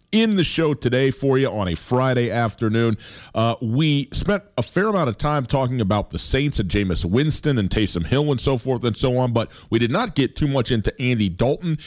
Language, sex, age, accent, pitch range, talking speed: English, male, 40-59, American, 105-145 Hz, 220 wpm